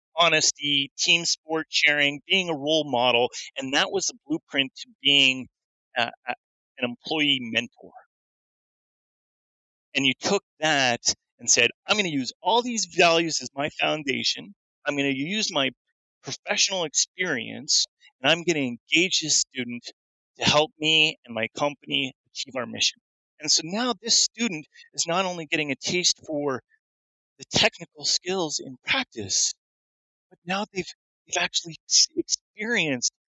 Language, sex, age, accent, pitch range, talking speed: English, male, 30-49, American, 135-180 Hz, 145 wpm